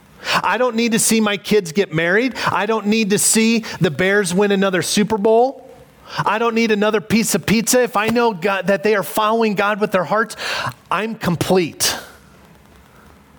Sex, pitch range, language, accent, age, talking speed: male, 150-195 Hz, English, American, 30-49, 180 wpm